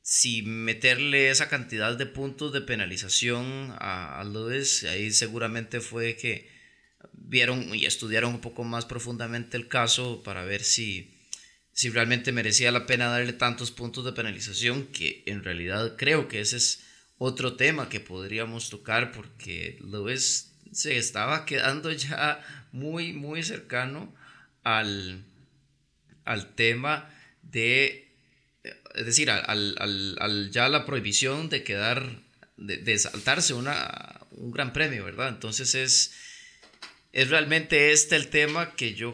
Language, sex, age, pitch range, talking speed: Spanish, male, 20-39, 110-140 Hz, 135 wpm